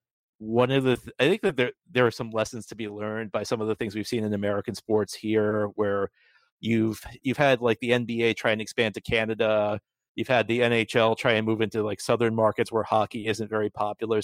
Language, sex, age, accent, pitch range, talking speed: English, male, 30-49, American, 105-120 Hz, 230 wpm